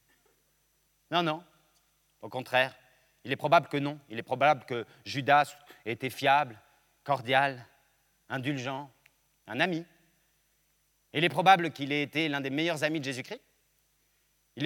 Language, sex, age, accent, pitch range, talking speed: French, male, 40-59, French, 140-175 Hz, 140 wpm